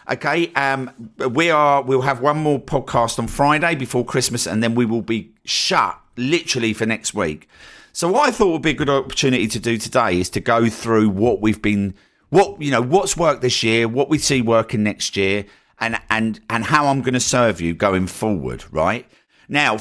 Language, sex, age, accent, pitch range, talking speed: English, male, 50-69, British, 100-130 Hz, 205 wpm